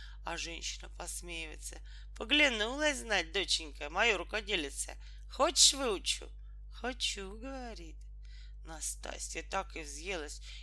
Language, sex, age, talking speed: Russian, male, 40-59, 90 wpm